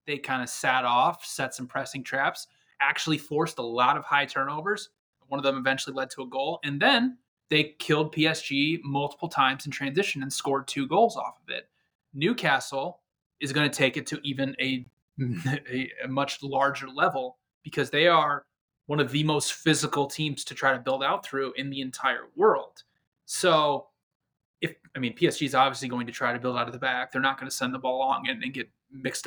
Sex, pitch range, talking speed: male, 135-155 Hz, 205 wpm